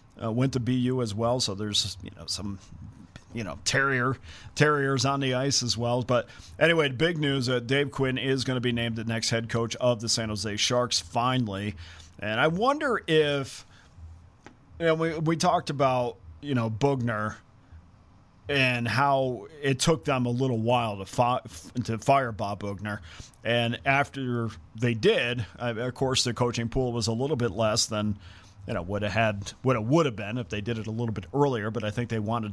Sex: male